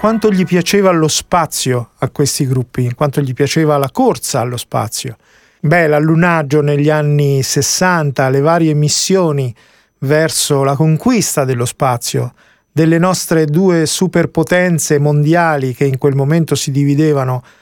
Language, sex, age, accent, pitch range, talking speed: Italian, male, 40-59, native, 135-175 Hz, 135 wpm